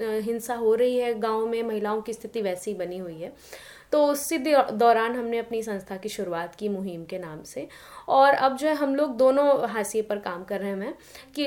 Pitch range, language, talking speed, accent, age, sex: 200-255 Hz, Hindi, 215 wpm, native, 20-39, female